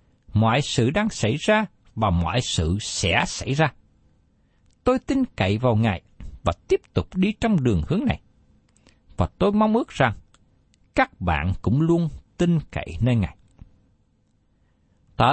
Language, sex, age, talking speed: Vietnamese, male, 60-79, 150 wpm